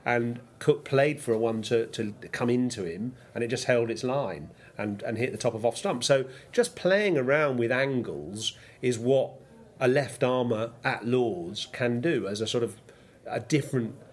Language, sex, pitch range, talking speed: English, male, 115-135 Hz, 195 wpm